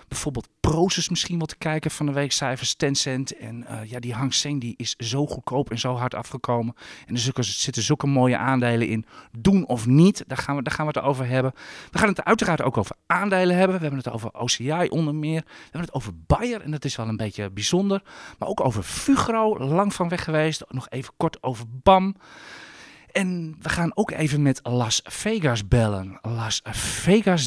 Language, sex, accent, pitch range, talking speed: Dutch, male, Dutch, 125-180 Hz, 200 wpm